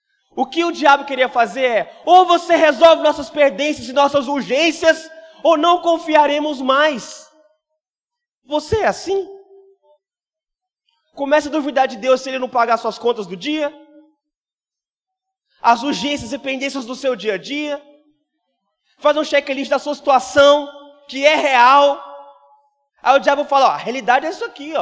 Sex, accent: male, Brazilian